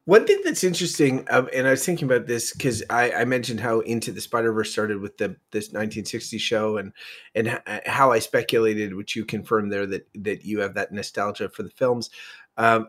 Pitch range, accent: 115-165 Hz, American